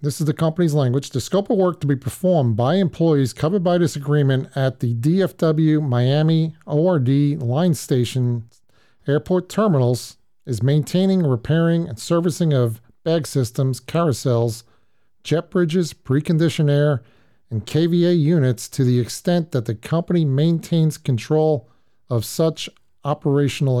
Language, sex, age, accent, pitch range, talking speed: English, male, 40-59, American, 120-155 Hz, 135 wpm